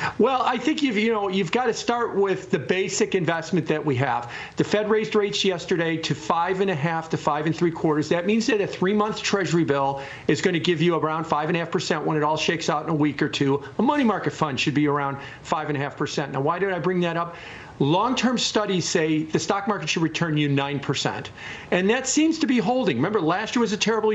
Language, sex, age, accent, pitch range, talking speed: English, male, 50-69, American, 155-210 Hz, 250 wpm